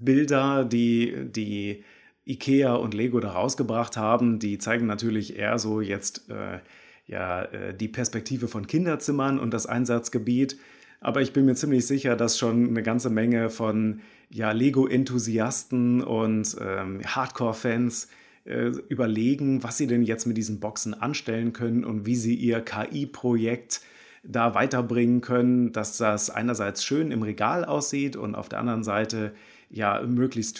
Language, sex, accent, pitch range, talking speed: German, male, German, 110-130 Hz, 145 wpm